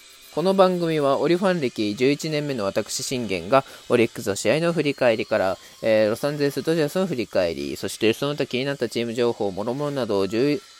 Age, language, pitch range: 20-39, Japanese, 110-145 Hz